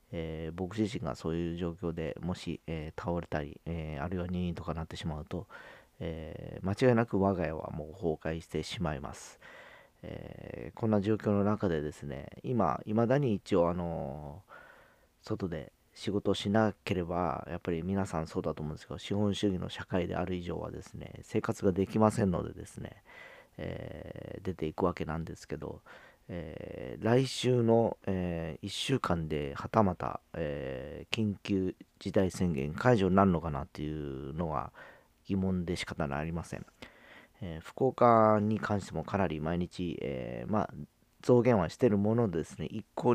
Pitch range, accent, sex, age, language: 80-105 Hz, native, male, 40-59, Japanese